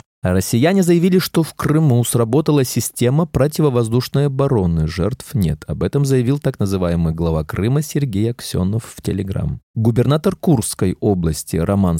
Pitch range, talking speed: 100-150 Hz, 130 wpm